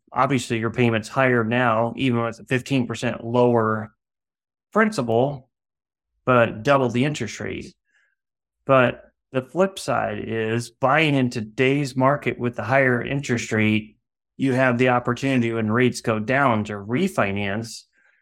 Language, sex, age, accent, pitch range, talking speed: English, male, 30-49, American, 115-130 Hz, 130 wpm